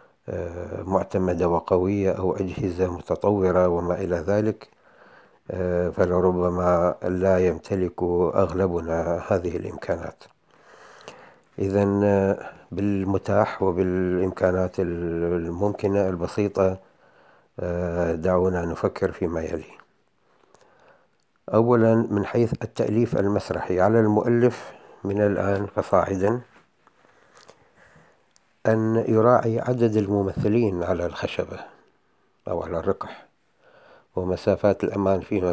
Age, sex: 60-79, male